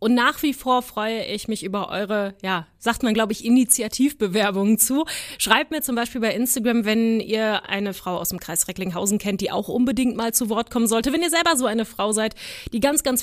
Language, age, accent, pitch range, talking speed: German, 30-49, German, 195-245 Hz, 220 wpm